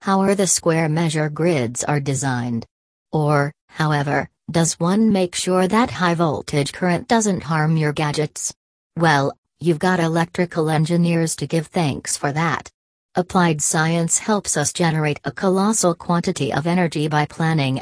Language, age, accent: English, 40-59, American